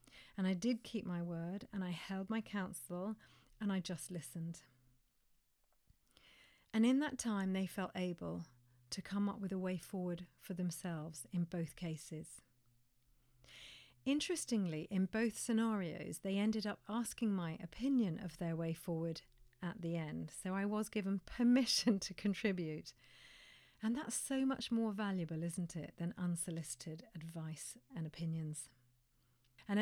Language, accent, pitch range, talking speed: English, British, 160-210 Hz, 145 wpm